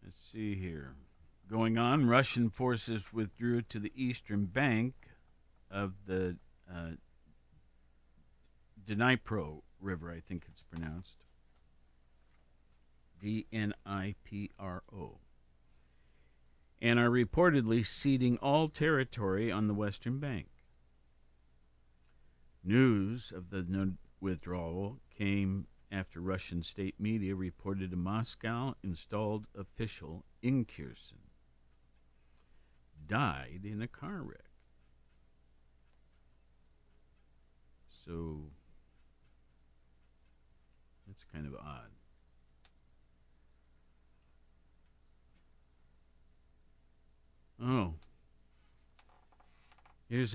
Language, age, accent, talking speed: English, 50-69, American, 75 wpm